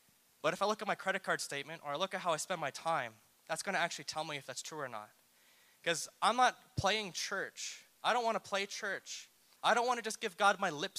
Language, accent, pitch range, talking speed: English, American, 125-175 Hz, 250 wpm